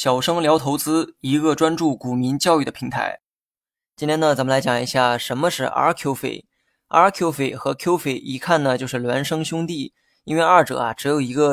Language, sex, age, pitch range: Chinese, male, 20-39, 130-165 Hz